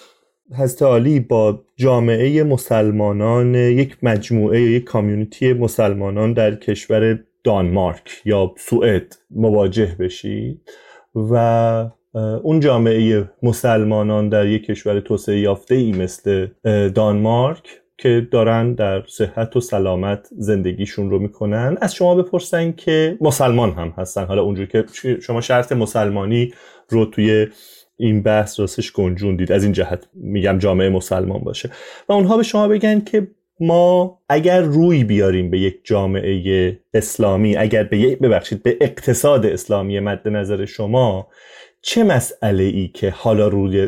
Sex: male